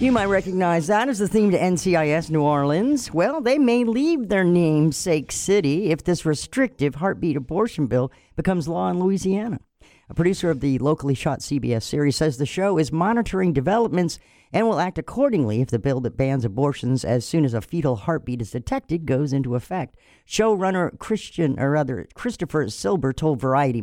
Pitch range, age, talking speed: 135-190 Hz, 50-69, 180 wpm